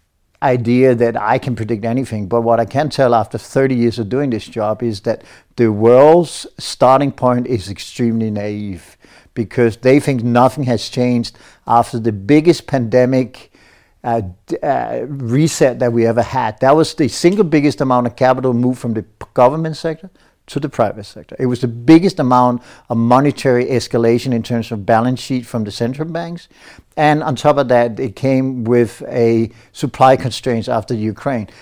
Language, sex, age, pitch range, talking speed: Czech, male, 60-79, 115-135 Hz, 175 wpm